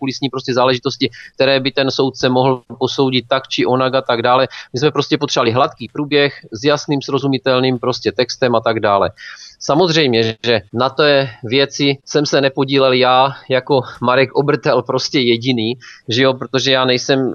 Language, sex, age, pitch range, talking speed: Czech, male, 30-49, 125-145 Hz, 165 wpm